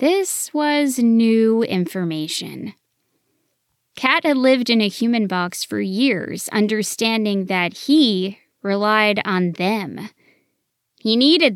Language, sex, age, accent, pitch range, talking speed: English, female, 20-39, American, 185-275 Hz, 110 wpm